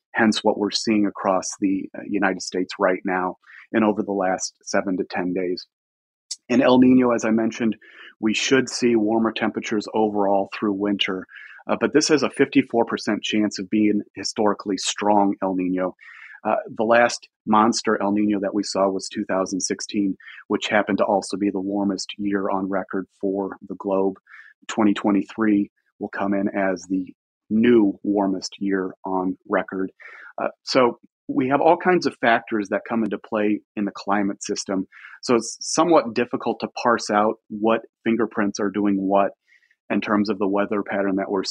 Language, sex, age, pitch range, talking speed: English, male, 30-49, 95-110 Hz, 170 wpm